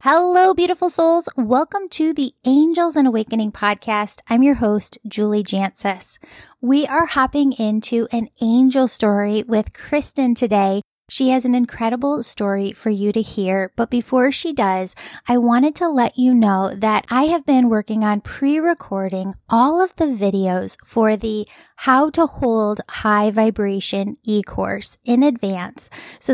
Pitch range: 210-260 Hz